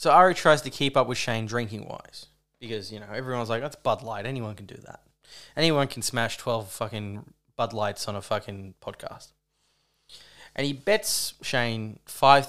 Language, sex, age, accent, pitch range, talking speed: English, male, 20-39, Australian, 110-140 Hz, 180 wpm